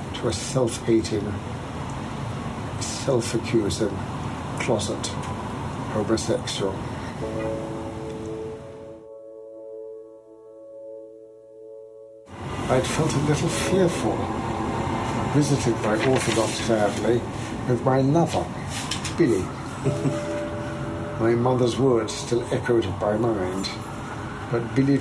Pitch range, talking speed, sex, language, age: 110-125 Hz, 65 wpm, male, English, 60-79